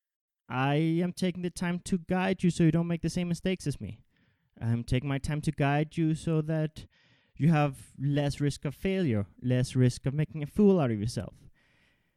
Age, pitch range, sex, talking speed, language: 30-49, 115-170 Hz, male, 205 wpm, English